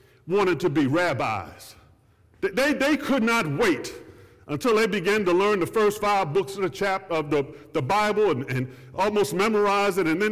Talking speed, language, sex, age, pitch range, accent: 190 wpm, English, male, 50-69, 150-235 Hz, American